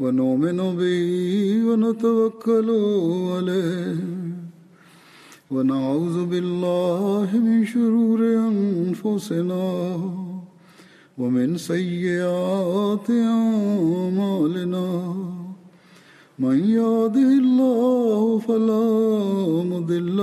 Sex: male